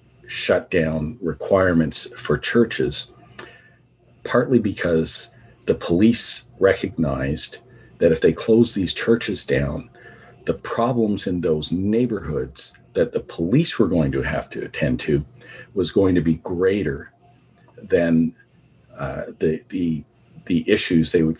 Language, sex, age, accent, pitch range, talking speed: English, male, 50-69, American, 80-115 Hz, 125 wpm